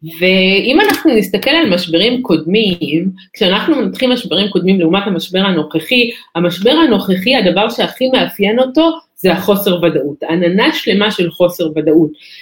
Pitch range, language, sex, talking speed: 180-240 Hz, Hebrew, female, 130 wpm